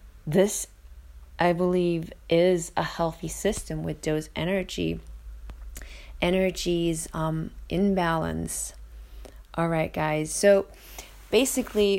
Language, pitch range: English, 160-185 Hz